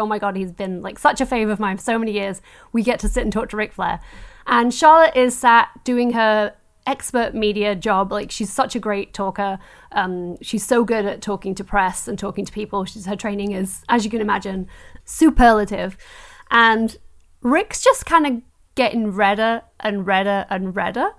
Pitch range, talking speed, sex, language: 210-285 Hz, 200 wpm, female, English